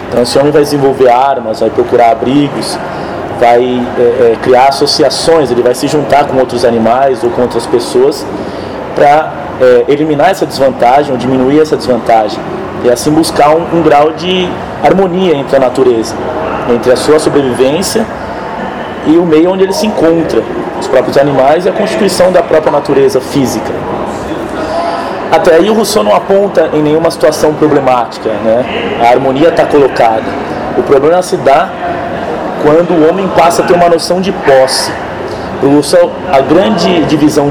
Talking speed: 155 wpm